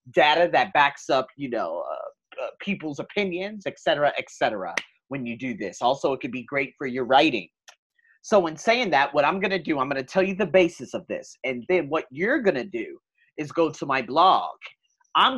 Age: 30-49